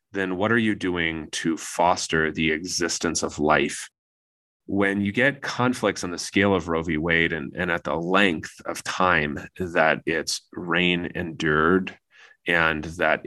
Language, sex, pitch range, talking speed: English, male, 80-95 Hz, 160 wpm